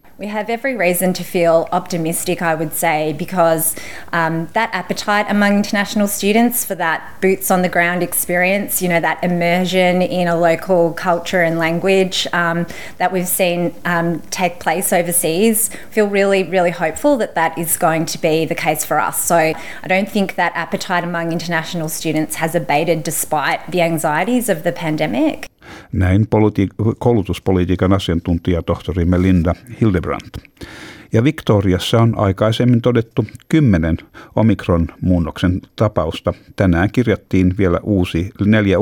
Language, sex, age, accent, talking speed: Finnish, female, 20-39, Australian, 145 wpm